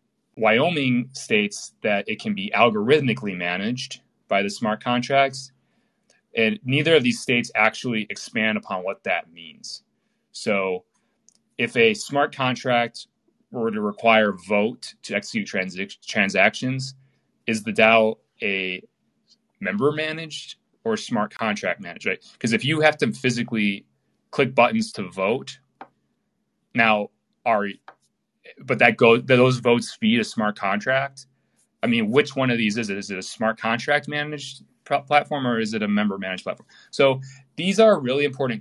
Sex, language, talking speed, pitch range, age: male, English, 150 wpm, 110-155 Hz, 30-49